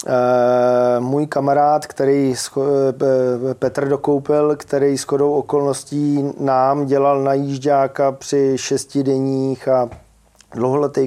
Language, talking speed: Czech, 100 wpm